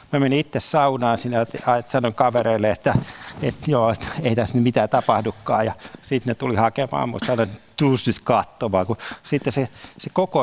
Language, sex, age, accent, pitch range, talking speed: Finnish, male, 50-69, native, 115-145 Hz, 165 wpm